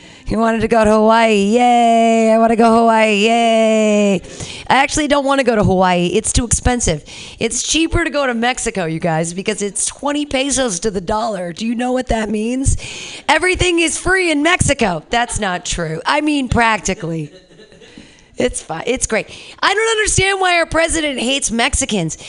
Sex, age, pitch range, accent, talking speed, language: female, 40-59, 215-295 Hz, American, 185 wpm, English